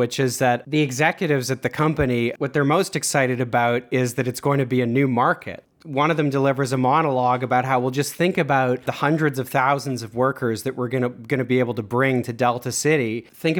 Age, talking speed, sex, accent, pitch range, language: 30-49, 230 wpm, male, American, 115-140 Hz, English